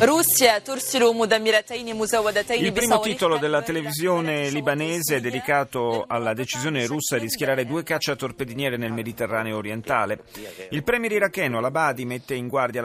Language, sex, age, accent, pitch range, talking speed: Italian, male, 40-59, native, 125-170 Hz, 120 wpm